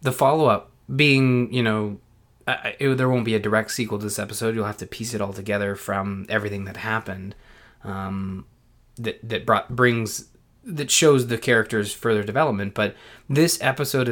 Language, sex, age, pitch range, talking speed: English, male, 20-39, 105-130 Hz, 180 wpm